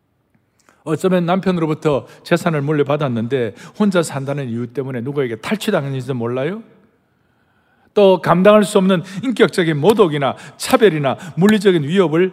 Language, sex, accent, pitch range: Korean, male, native, 140-210 Hz